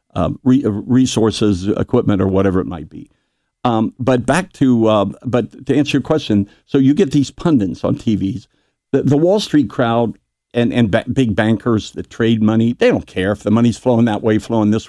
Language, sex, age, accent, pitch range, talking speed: English, male, 60-79, American, 105-130 Hz, 200 wpm